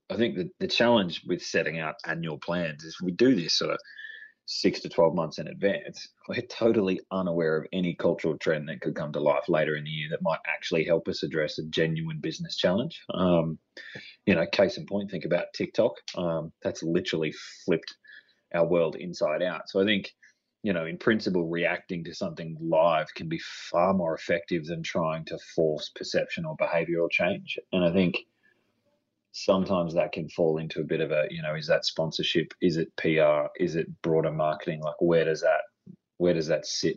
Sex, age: male, 30-49